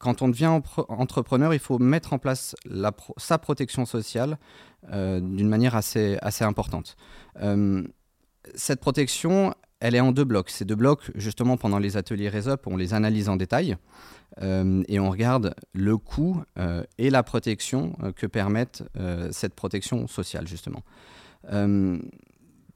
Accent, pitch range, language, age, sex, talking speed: French, 100-135 Hz, French, 30-49, male, 155 wpm